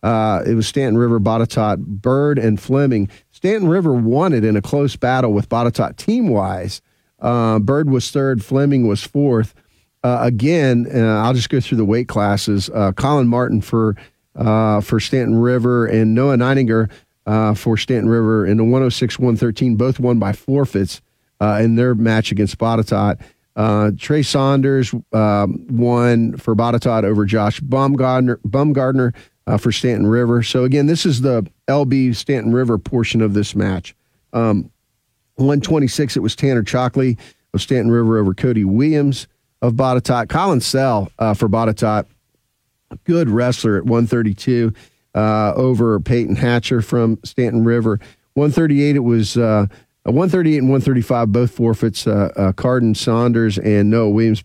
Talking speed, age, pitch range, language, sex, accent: 160 wpm, 50-69, 110-130 Hz, English, male, American